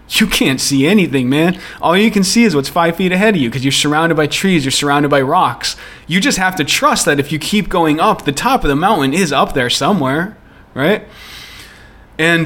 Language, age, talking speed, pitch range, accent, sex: English, 30-49, 225 wpm, 115-155 Hz, American, male